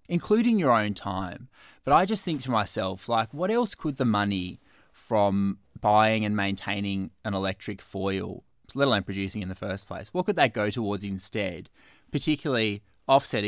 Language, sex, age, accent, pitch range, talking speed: English, male, 20-39, Australian, 100-130 Hz, 170 wpm